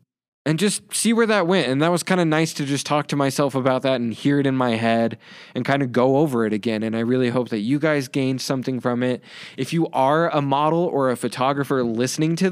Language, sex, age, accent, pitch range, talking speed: English, male, 20-39, American, 125-165 Hz, 255 wpm